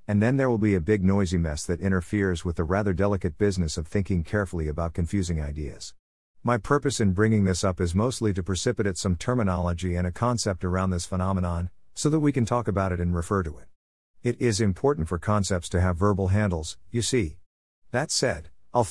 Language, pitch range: English, 90-115 Hz